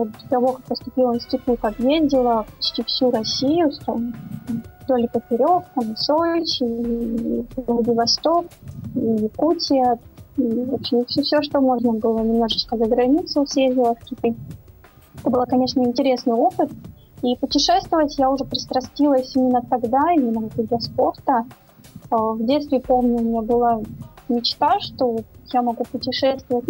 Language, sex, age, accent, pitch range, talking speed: Russian, female, 20-39, native, 235-270 Hz, 125 wpm